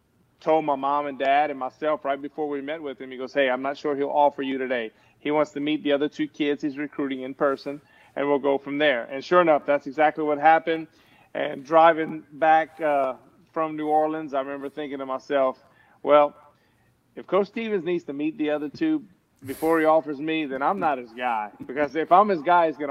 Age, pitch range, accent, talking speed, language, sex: 30-49, 135-155 Hz, American, 225 wpm, English, male